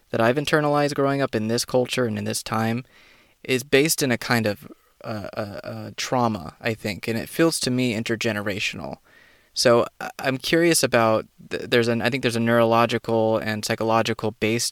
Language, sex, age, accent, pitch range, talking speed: English, male, 20-39, American, 105-120 Hz, 170 wpm